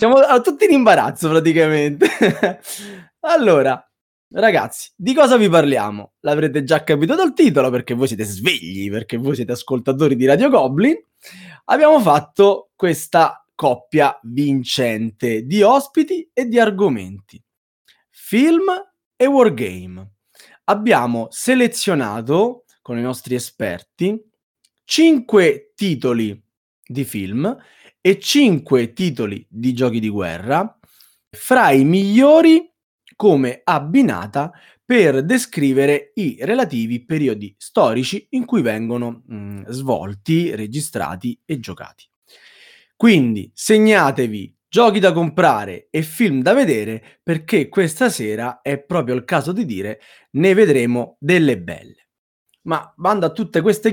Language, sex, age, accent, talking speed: Italian, male, 20-39, native, 115 wpm